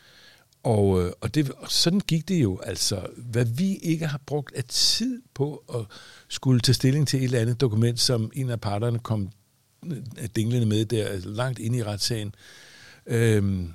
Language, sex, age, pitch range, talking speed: Danish, male, 60-79, 105-130 Hz, 175 wpm